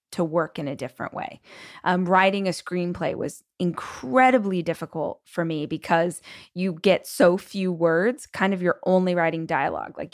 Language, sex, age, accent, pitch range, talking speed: English, female, 20-39, American, 165-200 Hz, 165 wpm